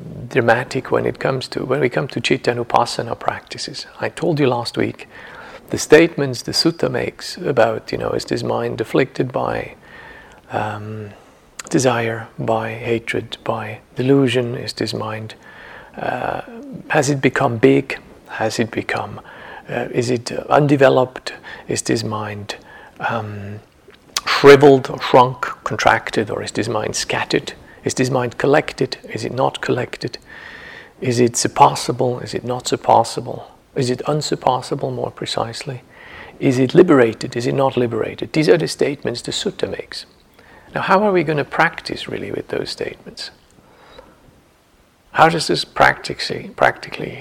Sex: male